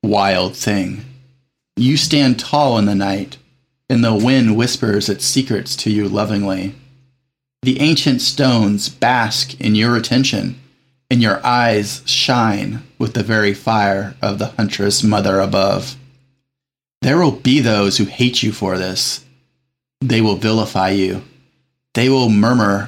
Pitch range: 105-130 Hz